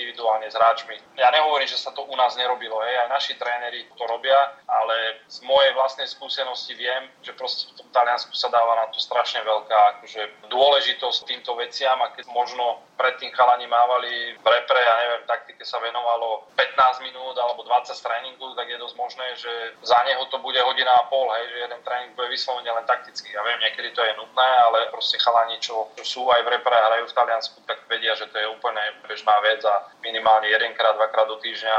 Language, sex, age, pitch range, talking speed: Slovak, male, 20-39, 110-125 Hz, 200 wpm